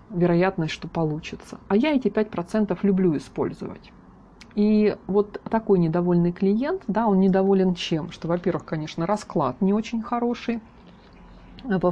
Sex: female